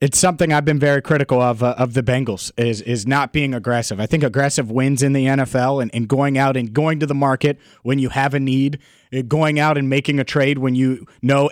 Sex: male